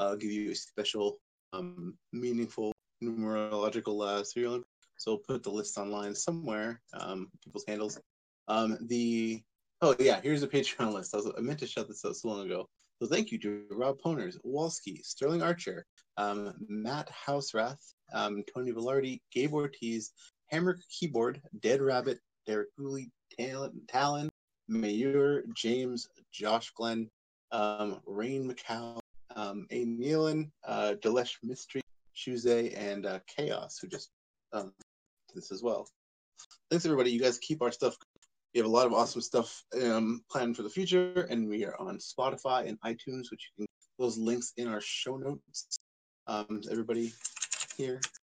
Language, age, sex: English, 20-39, male